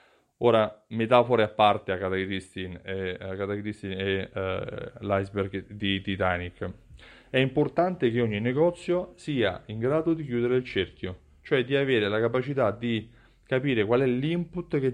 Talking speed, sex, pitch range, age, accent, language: 135 wpm, male, 100-125 Hz, 30-49, native, Italian